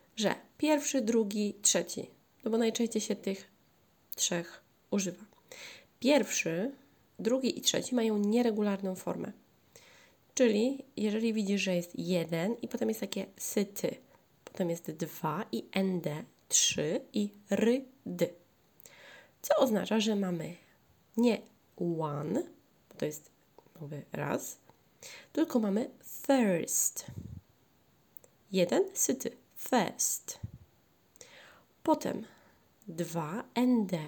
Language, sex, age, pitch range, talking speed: Polish, female, 20-39, 175-250 Hz, 100 wpm